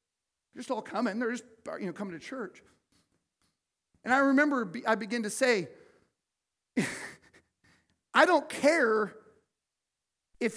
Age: 40-59